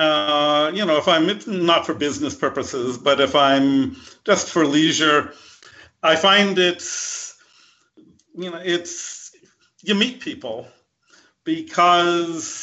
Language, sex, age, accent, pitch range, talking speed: English, male, 50-69, American, 150-180 Hz, 125 wpm